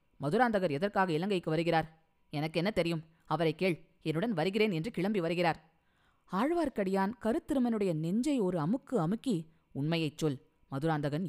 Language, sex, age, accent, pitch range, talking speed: Tamil, female, 20-39, native, 160-200 Hz, 120 wpm